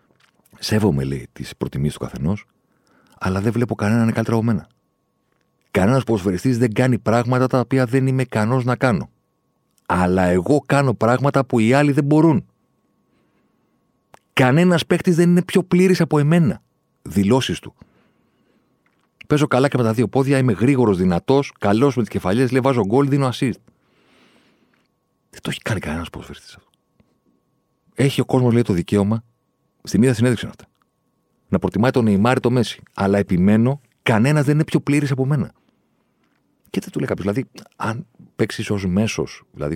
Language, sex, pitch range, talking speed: Greek, male, 105-140 Hz, 165 wpm